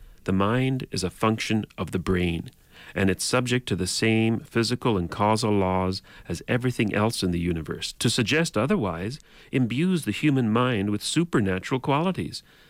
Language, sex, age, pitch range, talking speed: English, male, 40-59, 95-130 Hz, 160 wpm